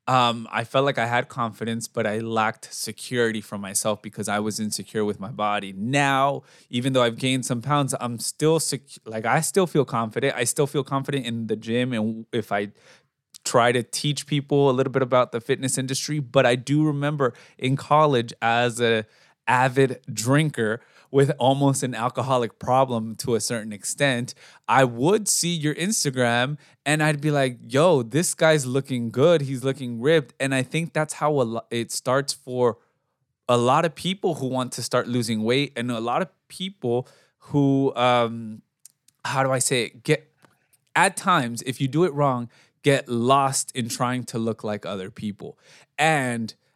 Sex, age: male, 20-39